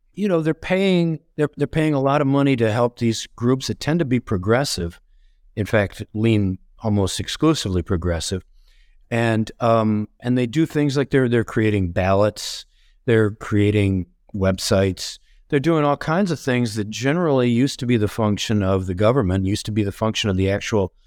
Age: 50-69